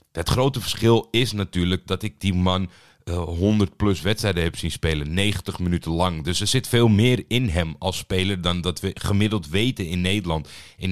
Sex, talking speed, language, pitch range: male, 190 wpm, Dutch, 85-105 Hz